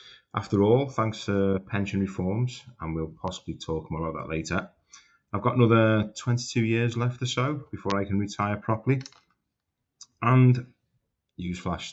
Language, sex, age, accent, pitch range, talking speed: English, male, 30-49, British, 85-115 Hz, 150 wpm